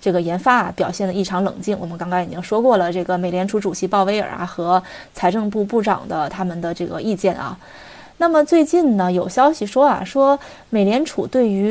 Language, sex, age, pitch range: Chinese, female, 20-39, 190-255 Hz